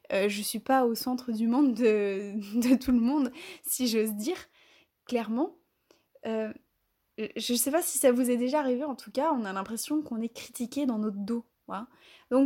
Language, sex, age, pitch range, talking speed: French, female, 20-39, 220-280 Hz, 205 wpm